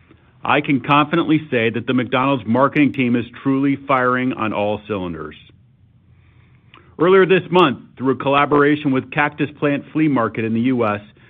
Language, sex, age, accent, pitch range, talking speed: English, male, 50-69, American, 115-145 Hz, 155 wpm